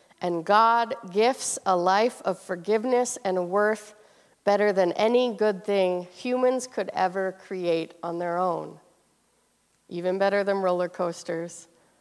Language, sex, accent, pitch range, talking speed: English, female, American, 180-230 Hz, 130 wpm